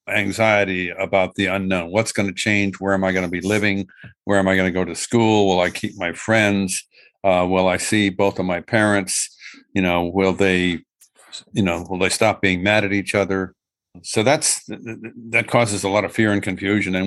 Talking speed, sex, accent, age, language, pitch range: 215 wpm, male, American, 60-79, English, 95-105 Hz